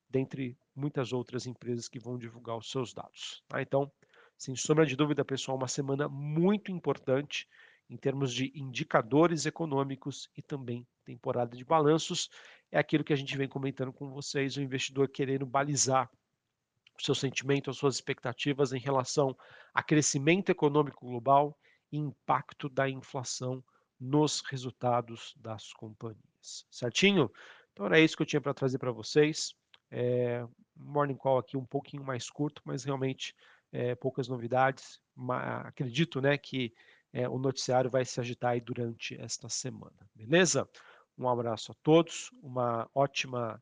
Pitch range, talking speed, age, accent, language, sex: 125-145 Hz, 150 wpm, 50-69, Brazilian, Portuguese, male